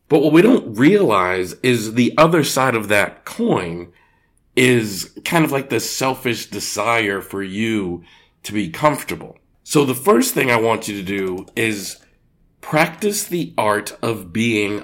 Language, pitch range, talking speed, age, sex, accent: English, 95-130 Hz, 160 wpm, 40-59, male, American